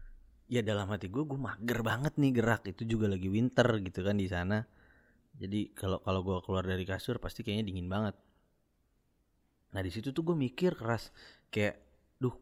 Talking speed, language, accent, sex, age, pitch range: 180 wpm, Indonesian, native, male, 30-49, 95-135 Hz